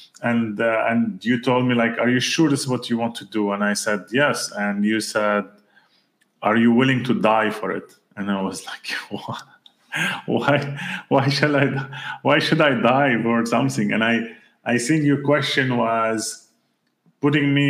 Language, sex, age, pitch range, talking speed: English, male, 30-49, 115-140 Hz, 175 wpm